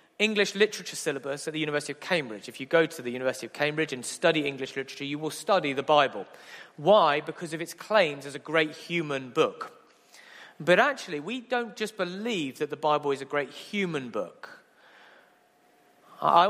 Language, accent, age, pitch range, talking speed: English, British, 40-59, 140-195 Hz, 180 wpm